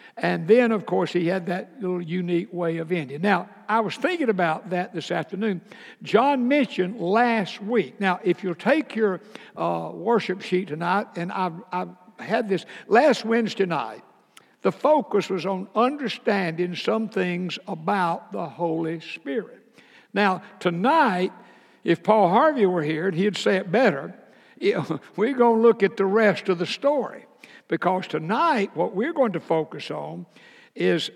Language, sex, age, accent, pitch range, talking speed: English, male, 60-79, American, 175-220 Hz, 160 wpm